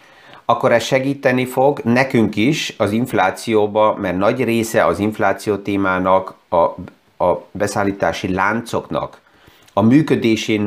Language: Hungarian